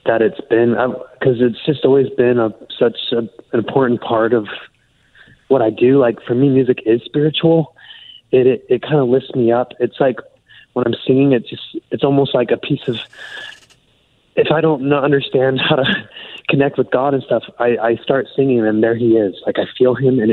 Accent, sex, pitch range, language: American, male, 120-140 Hz, English